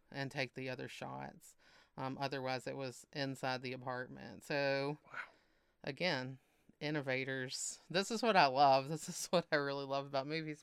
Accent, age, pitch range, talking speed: American, 30-49, 135-155 Hz, 160 wpm